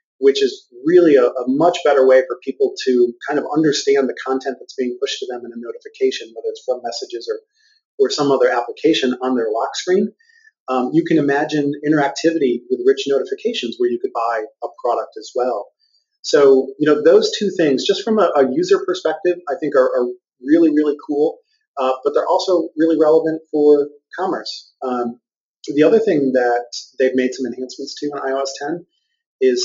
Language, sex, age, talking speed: English, male, 30-49, 190 wpm